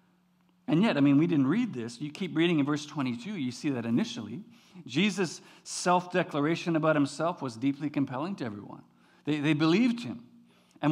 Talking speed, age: 175 wpm, 50-69